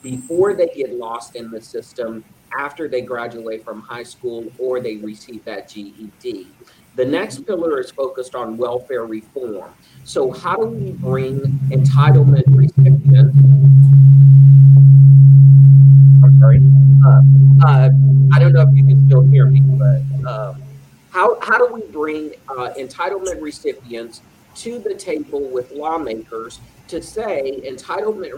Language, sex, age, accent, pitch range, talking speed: English, male, 50-69, American, 120-145 Hz, 135 wpm